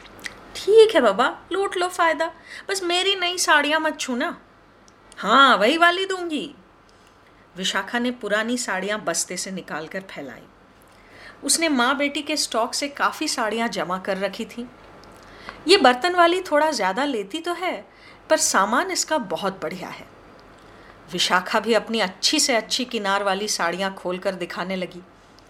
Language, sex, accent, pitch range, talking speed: Hindi, female, native, 210-345 Hz, 150 wpm